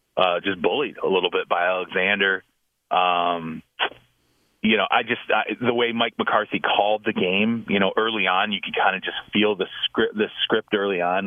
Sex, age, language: male, 30-49, English